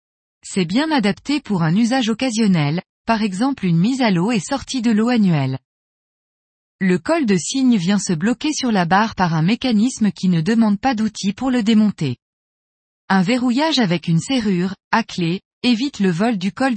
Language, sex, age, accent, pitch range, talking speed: French, female, 20-39, French, 180-250 Hz, 185 wpm